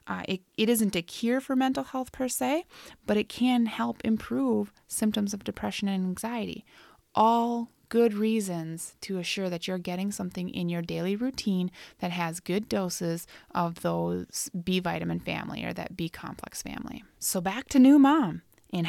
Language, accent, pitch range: English, American, 170-220 Hz